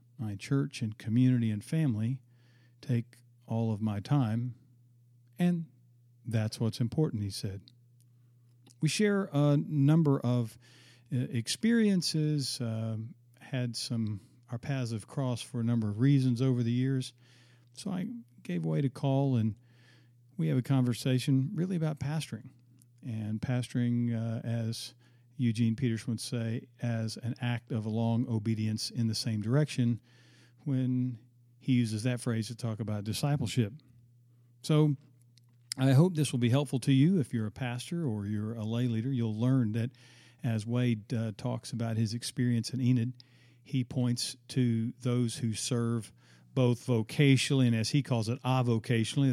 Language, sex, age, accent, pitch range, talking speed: English, male, 50-69, American, 115-130 Hz, 150 wpm